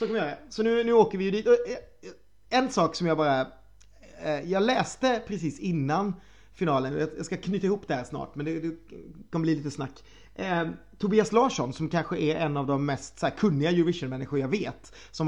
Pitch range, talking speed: 140-200 Hz, 180 wpm